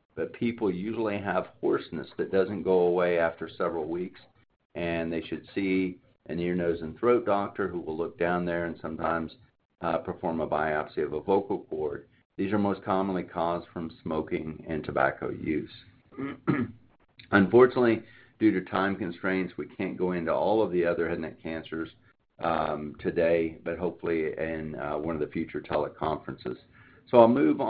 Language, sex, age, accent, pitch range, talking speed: English, male, 50-69, American, 85-100 Hz, 165 wpm